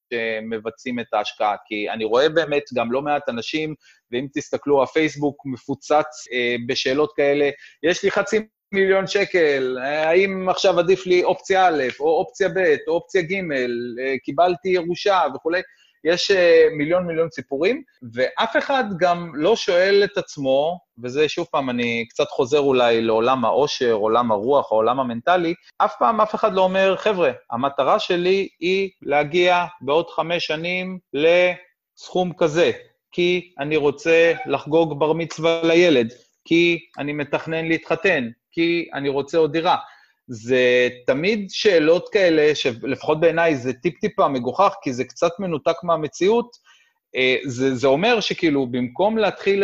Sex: male